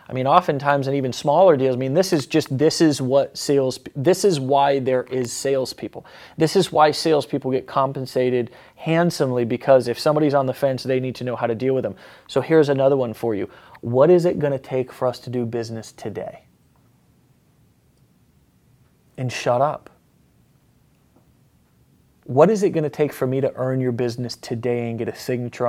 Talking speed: 190 wpm